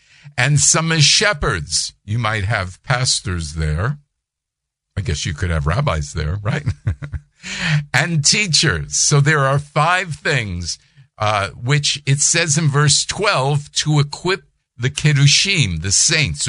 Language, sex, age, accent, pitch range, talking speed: English, male, 50-69, American, 115-150 Hz, 135 wpm